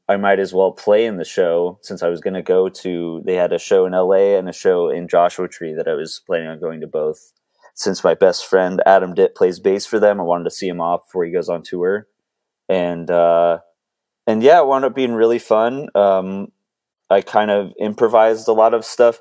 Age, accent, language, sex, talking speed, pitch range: 20-39, American, English, male, 235 wpm, 95-115 Hz